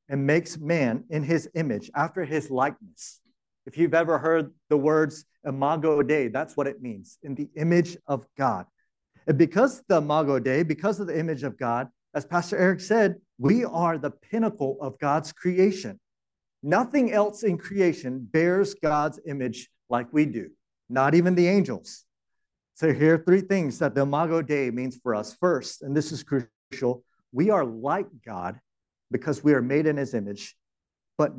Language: English